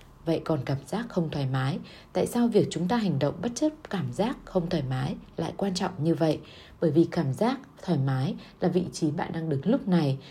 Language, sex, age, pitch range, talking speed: Vietnamese, female, 20-39, 145-200 Hz, 235 wpm